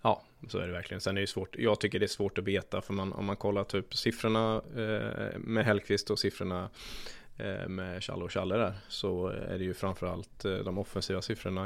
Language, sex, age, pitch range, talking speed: Swedish, male, 20-39, 95-105 Hz, 210 wpm